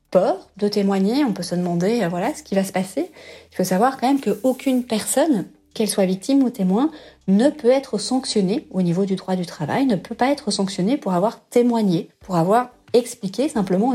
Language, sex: French, female